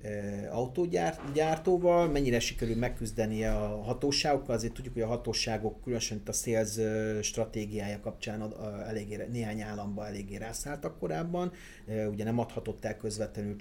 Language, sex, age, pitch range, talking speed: Hungarian, male, 30-49, 105-120 Hz, 125 wpm